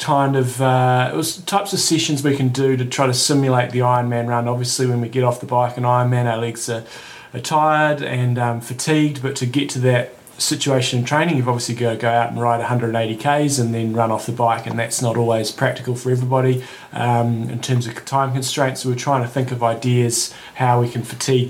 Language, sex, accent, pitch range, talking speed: English, male, Australian, 120-135 Hz, 230 wpm